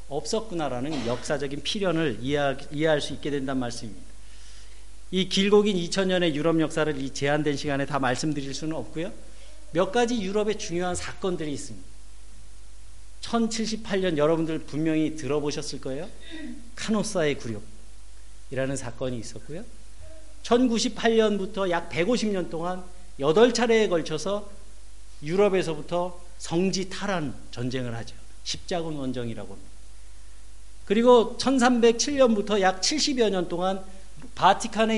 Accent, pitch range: native, 135-210 Hz